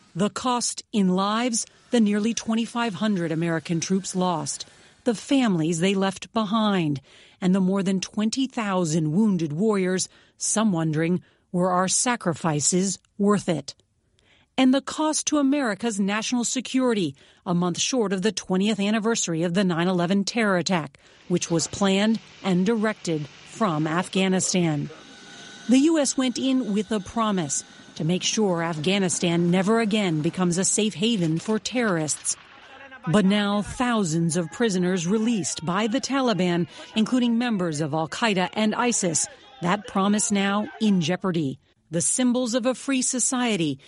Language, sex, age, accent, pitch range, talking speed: English, female, 40-59, American, 170-225 Hz, 135 wpm